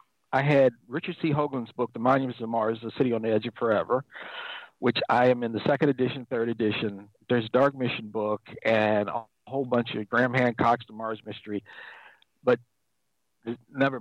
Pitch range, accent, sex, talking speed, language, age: 115-140 Hz, American, male, 185 wpm, English, 50-69